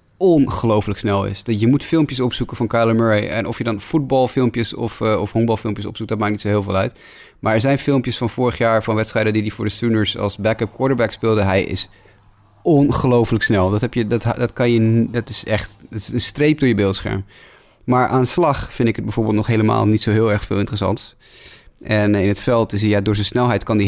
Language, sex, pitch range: Dutch, male, 100-115 Hz